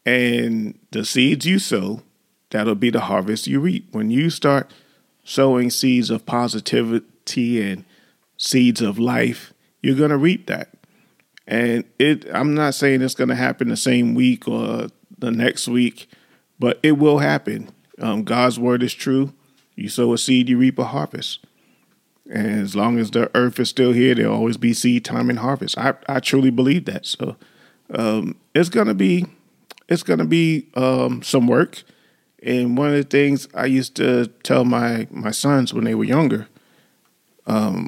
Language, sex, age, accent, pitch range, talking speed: English, male, 40-59, American, 115-140 Hz, 175 wpm